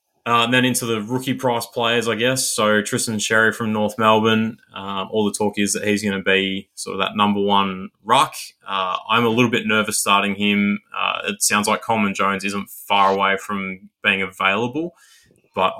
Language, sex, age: English, male, 20-39